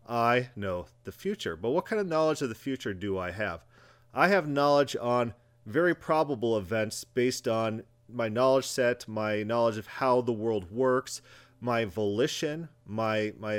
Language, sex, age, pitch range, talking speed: English, male, 40-59, 110-135 Hz, 170 wpm